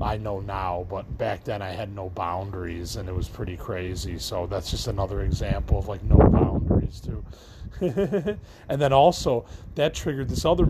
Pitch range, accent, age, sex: 95-125 Hz, American, 30-49, male